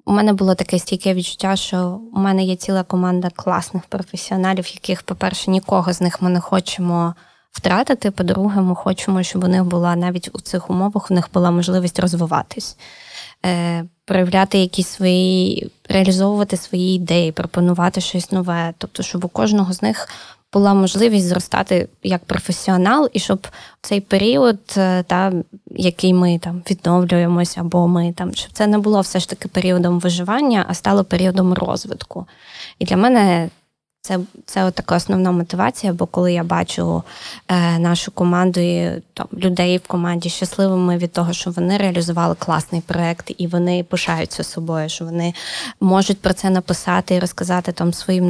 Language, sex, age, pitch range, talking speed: Ukrainian, female, 20-39, 175-190 Hz, 160 wpm